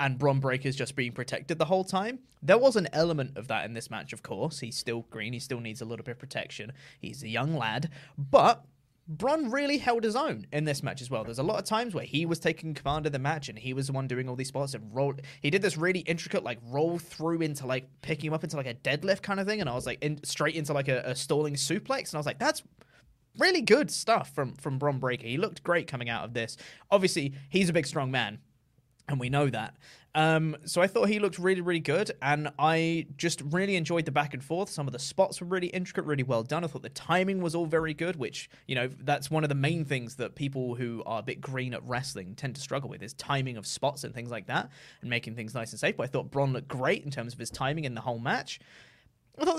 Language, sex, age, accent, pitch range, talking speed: English, male, 20-39, British, 130-170 Hz, 265 wpm